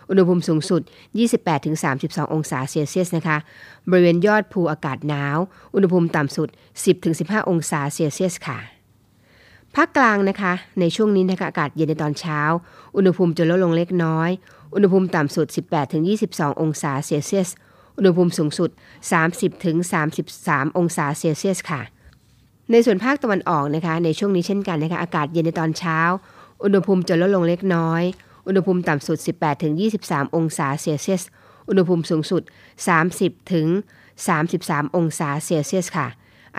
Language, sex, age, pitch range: Thai, female, 20-39, 155-185 Hz